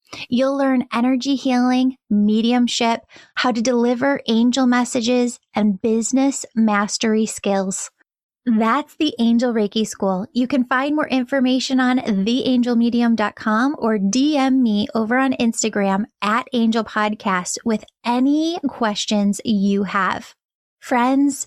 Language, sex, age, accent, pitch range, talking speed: English, female, 10-29, American, 215-260 Hz, 110 wpm